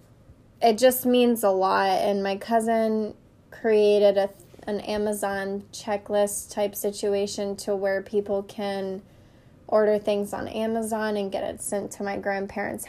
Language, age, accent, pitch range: English, 10-29, American, 195-215 Hz